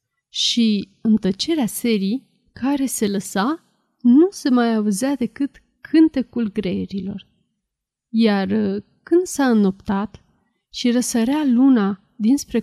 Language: Romanian